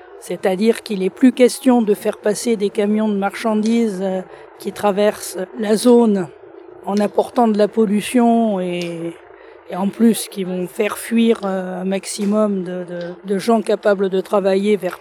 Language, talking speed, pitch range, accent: French, 145 wpm, 195-240 Hz, French